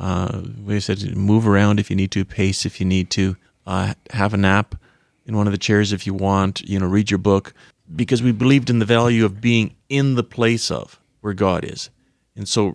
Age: 30-49